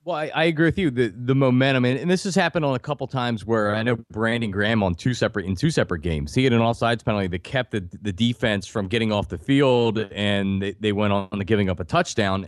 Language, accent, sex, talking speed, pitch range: English, American, male, 265 wpm, 105-145 Hz